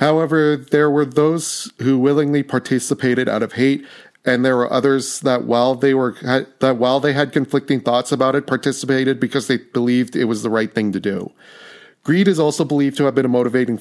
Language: English